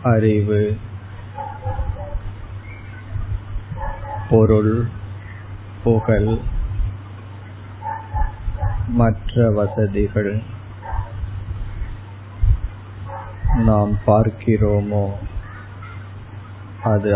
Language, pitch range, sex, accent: Tamil, 100-105 Hz, male, native